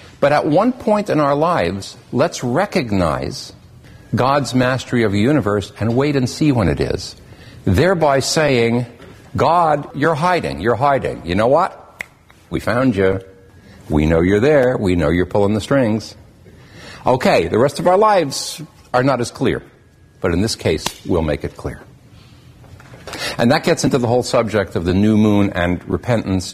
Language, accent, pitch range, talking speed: English, American, 100-135 Hz, 170 wpm